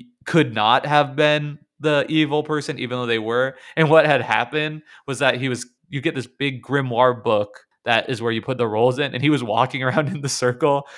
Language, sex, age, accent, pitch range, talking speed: English, male, 20-39, American, 120-145 Hz, 225 wpm